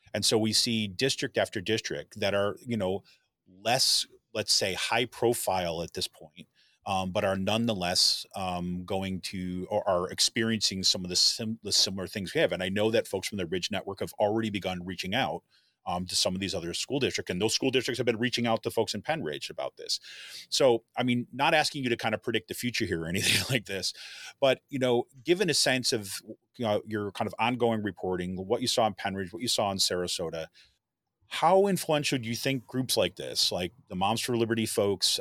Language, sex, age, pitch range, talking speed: English, male, 30-49, 95-125 Hz, 220 wpm